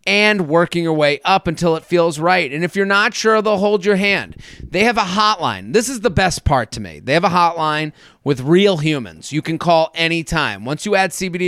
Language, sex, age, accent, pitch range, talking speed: English, male, 30-49, American, 155-210 Hz, 230 wpm